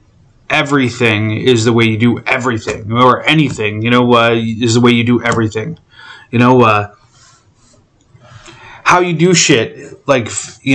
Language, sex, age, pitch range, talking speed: English, male, 30-49, 115-145 Hz, 150 wpm